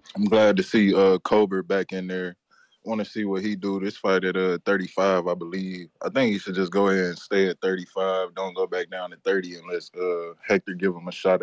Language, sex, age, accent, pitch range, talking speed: English, male, 20-39, American, 90-100 Hz, 240 wpm